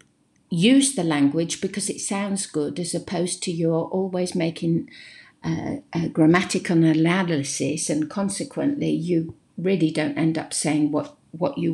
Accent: British